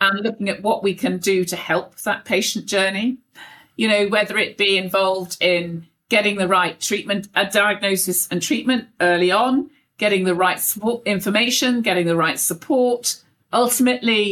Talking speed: 160 wpm